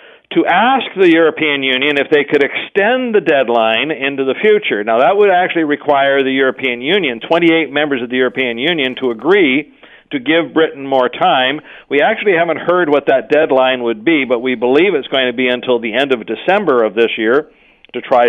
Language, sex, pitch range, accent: English, male, 130-185 Hz, American